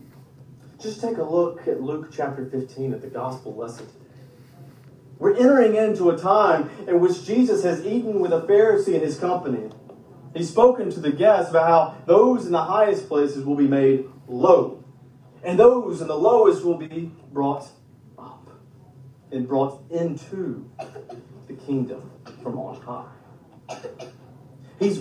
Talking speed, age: 150 wpm, 40-59